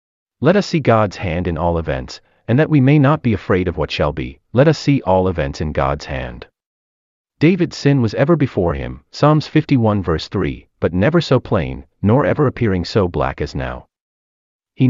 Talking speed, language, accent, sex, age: 195 wpm, English, American, male, 30-49